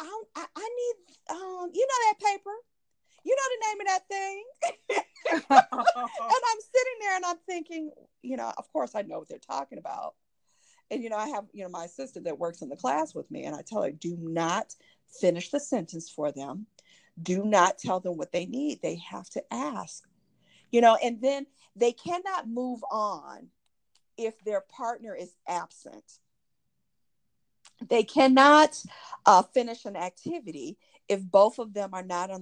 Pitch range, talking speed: 190-310 Hz, 180 wpm